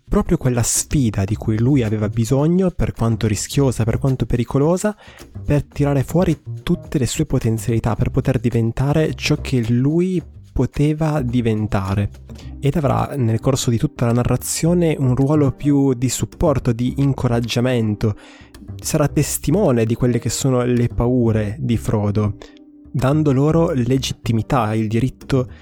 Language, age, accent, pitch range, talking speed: Italian, 20-39, native, 115-145 Hz, 140 wpm